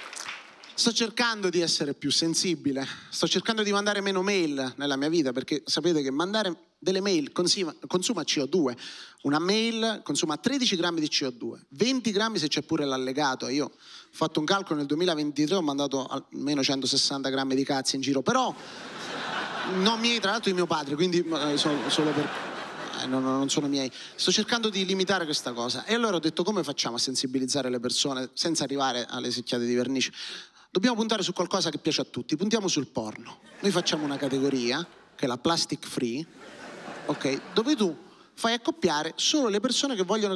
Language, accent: Italian, native